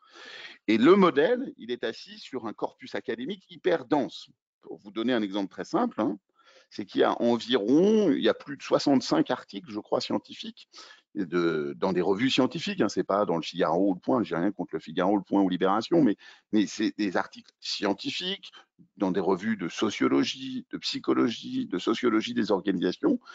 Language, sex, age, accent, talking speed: French, male, 50-69, French, 195 wpm